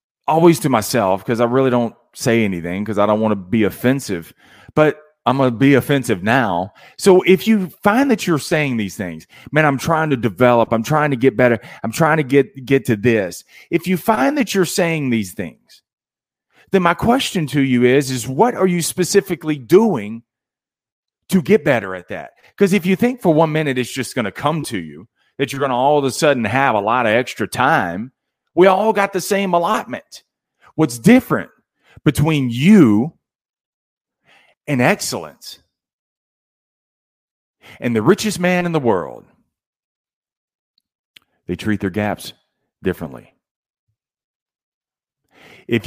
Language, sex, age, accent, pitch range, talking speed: English, male, 30-49, American, 115-170 Hz, 165 wpm